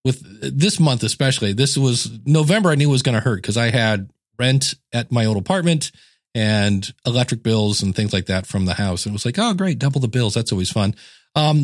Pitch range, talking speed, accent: 115-155 Hz, 230 wpm, American